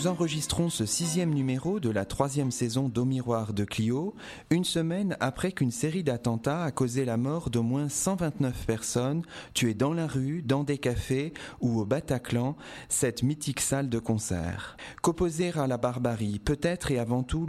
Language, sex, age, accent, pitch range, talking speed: French, male, 30-49, French, 115-145 Hz, 170 wpm